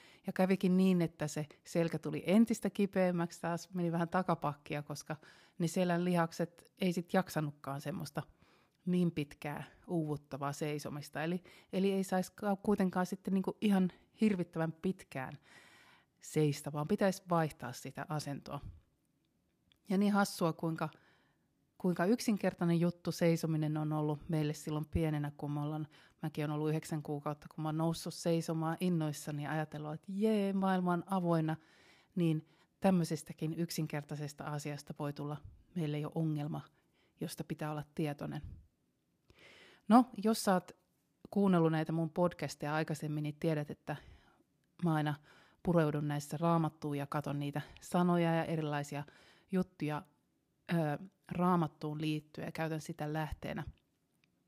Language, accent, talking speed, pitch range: Finnish, native, 130 wpm, 150-180 Hz